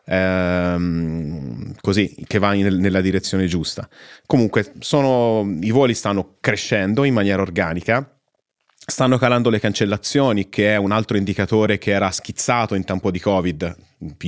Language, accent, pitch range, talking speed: Italian, native, 90-105 Hz, 140 wpm